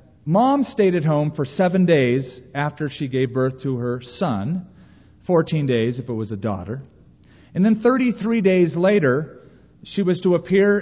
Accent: American